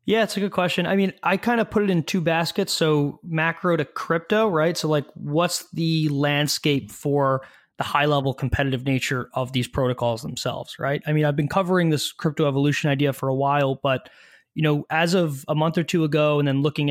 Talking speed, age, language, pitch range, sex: 215 wpm, 20-39, English, 130-160 Hz, male